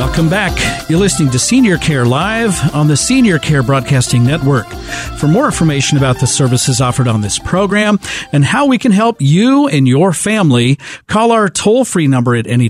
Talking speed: 185 wpm